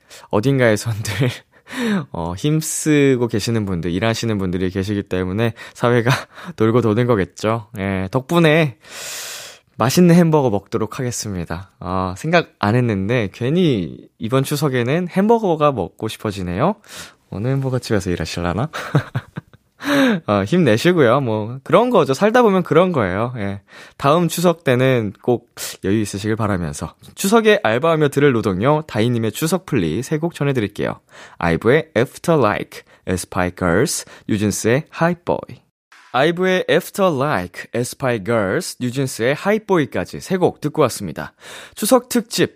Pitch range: 105-165 Hz